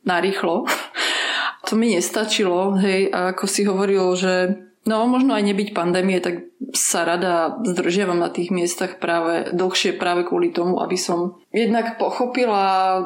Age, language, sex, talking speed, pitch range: 20-39, Slovak, female, 140 wpm, 180-205 Hz